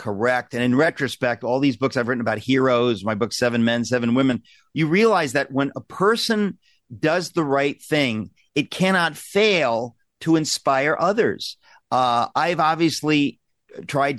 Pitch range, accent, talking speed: 125-165 Hz, American, 155 wpm